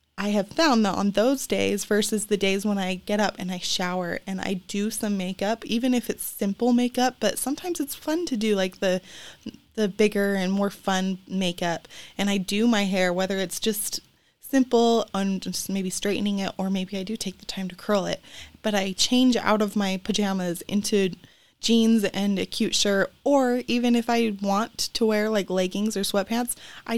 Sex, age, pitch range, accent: female, 20-39, 185-220 Hz, American